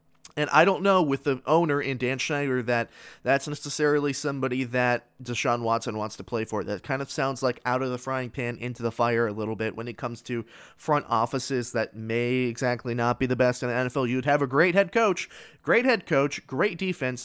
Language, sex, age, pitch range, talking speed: English, male, 20-39, 115-145 Hz, 225 wpm